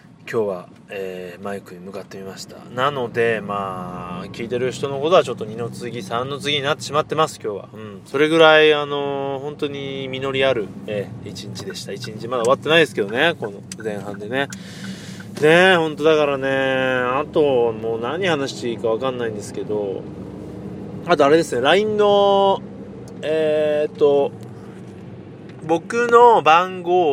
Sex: male